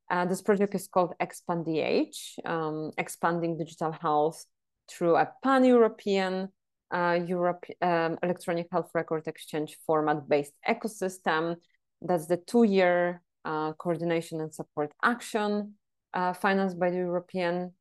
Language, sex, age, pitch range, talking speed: English, female, 30-49, 160-195 Hz, 120 wpm